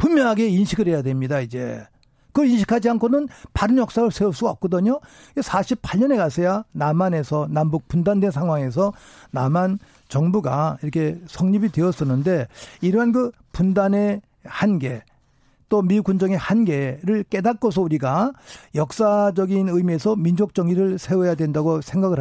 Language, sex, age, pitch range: Korean, male, 50-69, 155-215 Hz